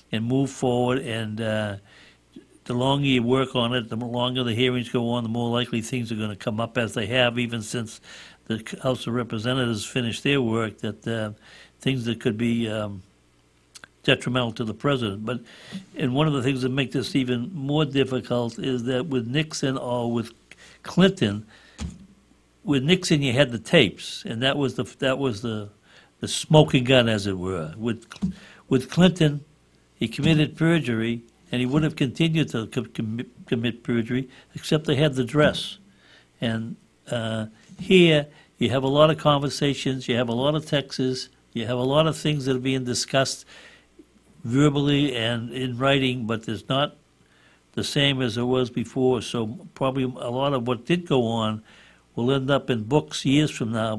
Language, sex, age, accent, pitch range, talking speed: English, male, 60-79, American, 115-140 Hz, 180 wpm